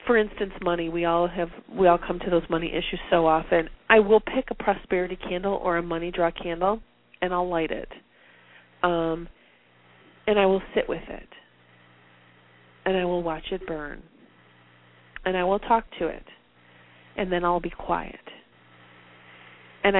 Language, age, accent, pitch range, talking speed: English, 30-49, American, 175-235 Hz, 165 wpm